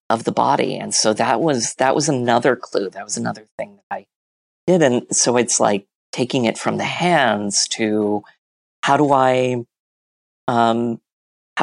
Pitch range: 100-135 Hz